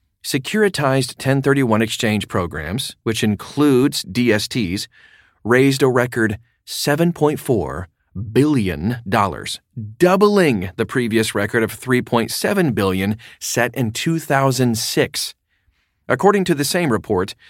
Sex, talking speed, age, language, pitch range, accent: male, 95 wpm, 40-59, English, 105-140 Hz, American